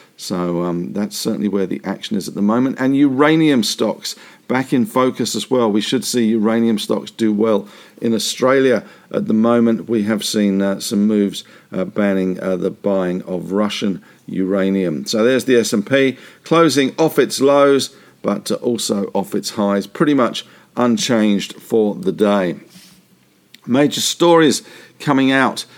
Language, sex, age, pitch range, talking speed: English, male, 50-69, 105-140 Hz, 160 wpm